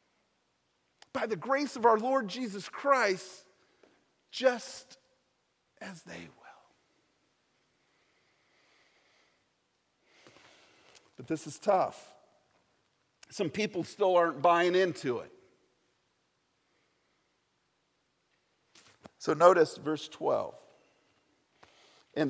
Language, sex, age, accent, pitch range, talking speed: English, male, 50-69, American, 175-245 Hz, 75 wpm